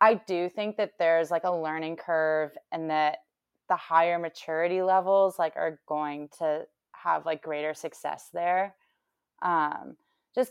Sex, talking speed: female, 150 wpm